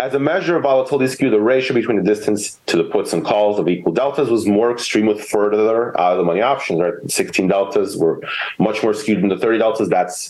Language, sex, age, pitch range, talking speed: English, male, 30-49, 105-160 Hz, 220 wpm